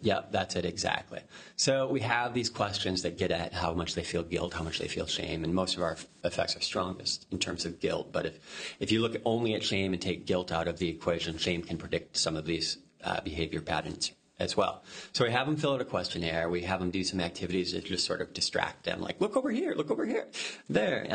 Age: 30-49